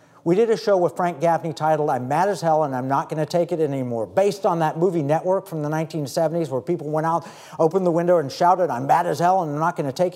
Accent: American